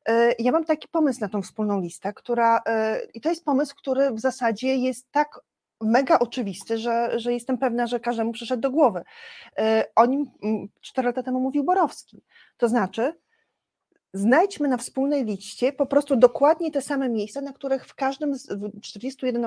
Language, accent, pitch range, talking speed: Polish, native, 210-275 Hz, 165 wpm